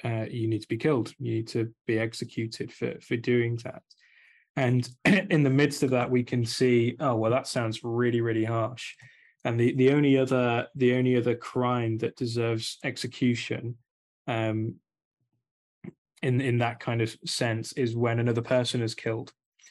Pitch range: 115-130 Hz